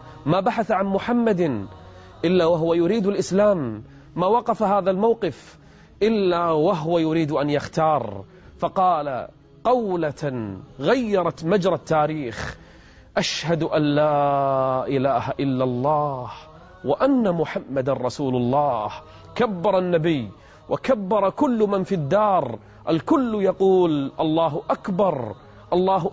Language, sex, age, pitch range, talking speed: Arabic, male, 30-49, 140-195 Hz, 100 wpm